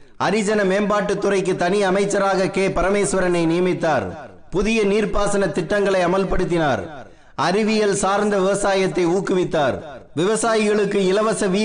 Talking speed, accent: 90 wpm, native